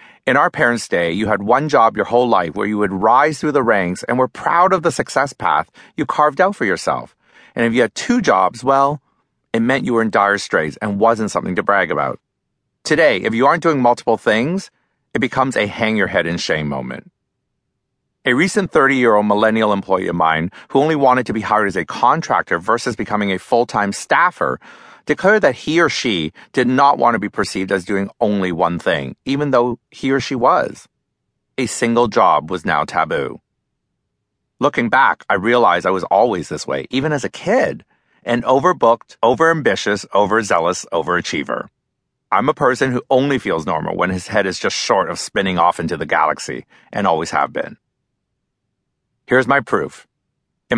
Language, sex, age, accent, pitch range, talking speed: English, male, 40-59, American, 105-140 Hz, 185 wpm